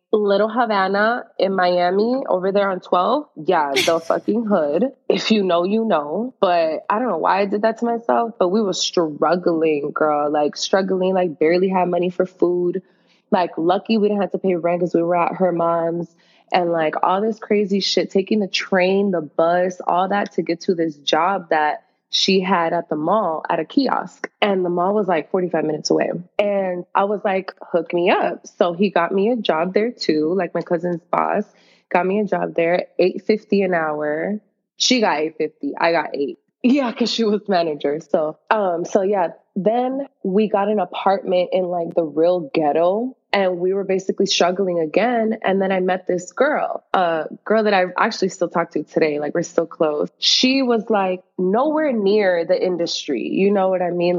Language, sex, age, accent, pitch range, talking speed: English, female, 20-39, American, 170-205 Hz, 195 wpm